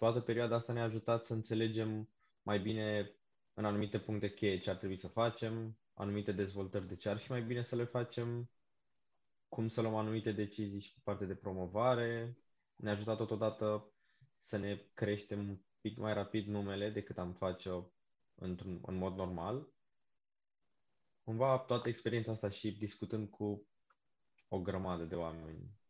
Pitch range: 95-115 Hz